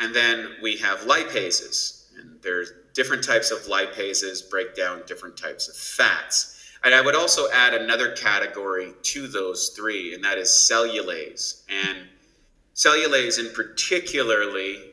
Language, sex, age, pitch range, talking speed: Italian, male, 30-49, 105-135 Hz, 140 wpm